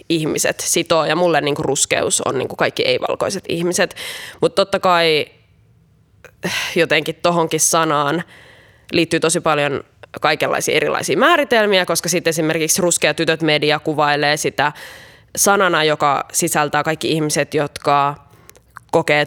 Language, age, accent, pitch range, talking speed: Finnish, 20-39, native, 155-200 Hz, 110 wpm